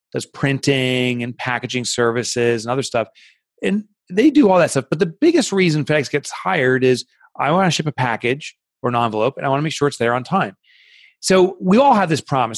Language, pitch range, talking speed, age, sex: English, 125-180 Hz, 225 wpm, 30-49, male